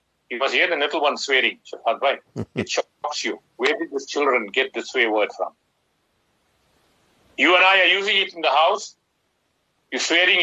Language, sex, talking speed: English, male, 175 wpm